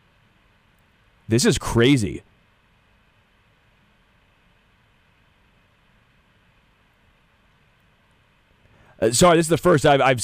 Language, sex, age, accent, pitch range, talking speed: English, male, 30-49, American, 110-150 Hz, 65 wpm